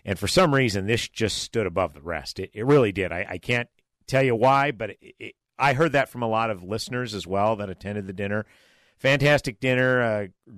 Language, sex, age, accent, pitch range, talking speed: English, male, 50-69, American, 90-125 Hz, 225 wpm